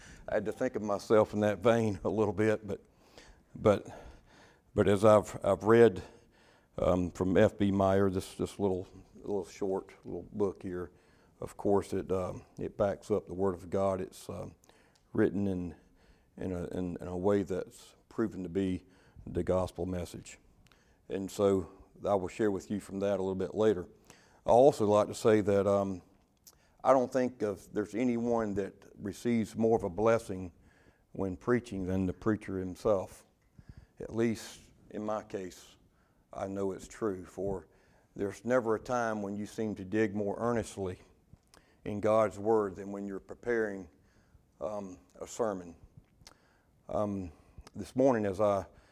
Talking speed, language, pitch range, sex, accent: 165 wpm, English, 95-110 Hz, male, American